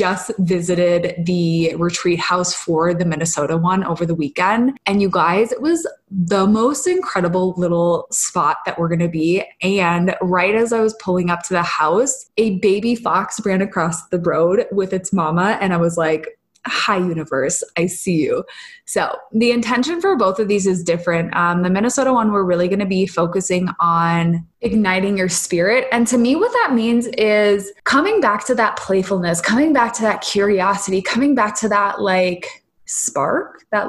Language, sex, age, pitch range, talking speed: English, female, 20-39, 175-220 Hz, 180 wpm